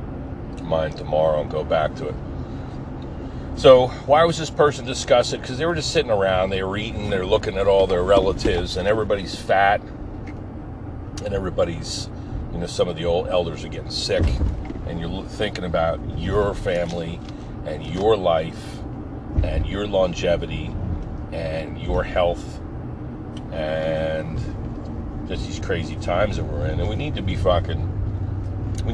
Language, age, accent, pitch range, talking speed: English, 40-59, American, 90-100 Hz, 155 wpm